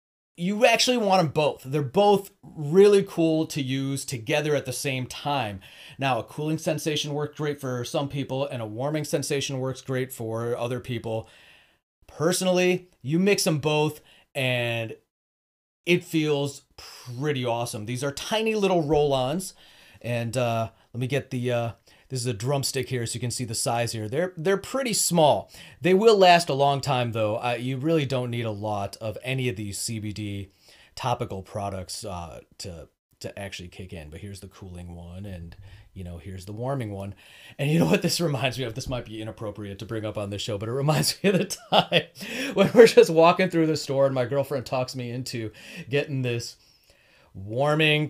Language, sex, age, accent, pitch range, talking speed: English, male, 30-49, American, 110-155 Hz, 190 wpm